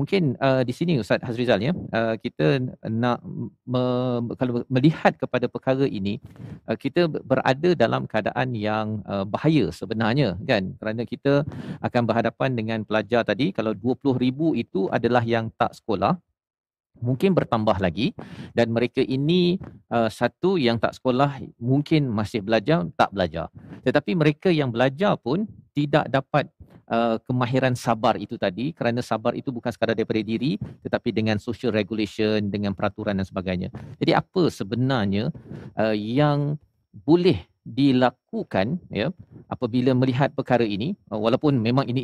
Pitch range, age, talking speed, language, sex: 115-140 Hz, 40-59, 135 wpm, Malay, male